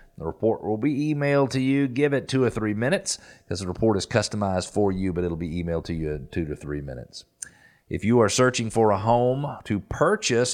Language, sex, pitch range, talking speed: English, male, 95-125 Hz, 230 wpm